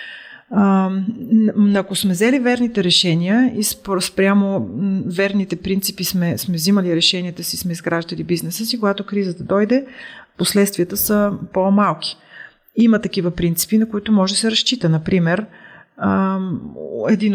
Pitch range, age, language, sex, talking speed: 175-200 Hz, 30-49, Bulgarian, female, 125 wpm